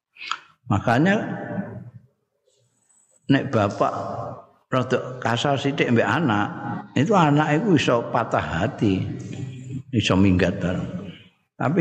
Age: 50-69